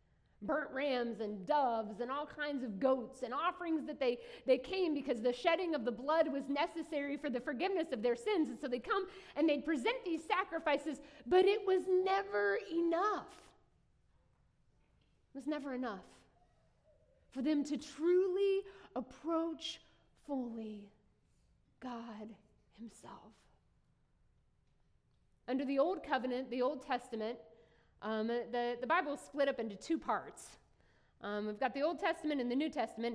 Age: 30-49